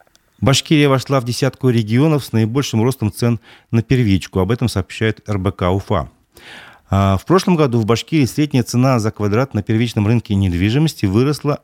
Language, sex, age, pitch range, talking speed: Russian, male, 30-49, 95-130 Hz, 155 wpm